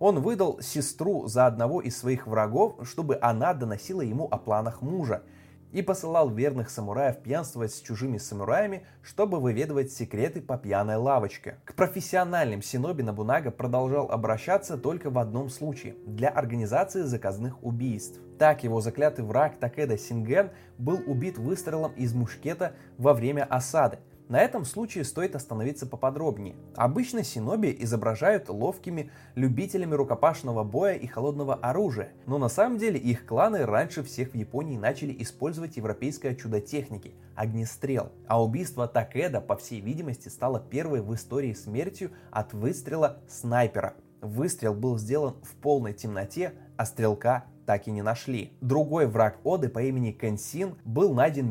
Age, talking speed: 20-39, 145 wpm